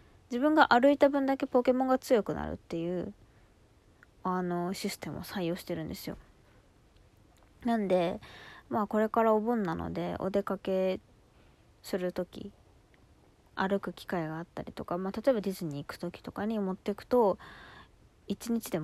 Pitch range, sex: 170-230 Hz, female